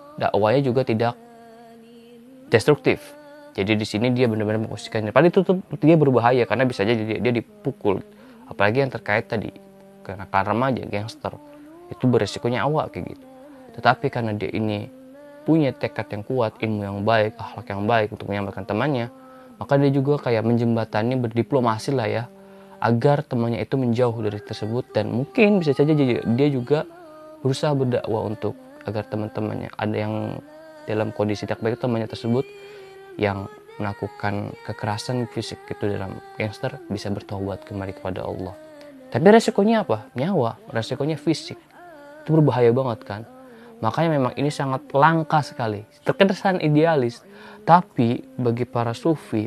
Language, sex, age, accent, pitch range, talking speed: Indonesian, male, 20-39, native, 110-165 Hz, 145 wpm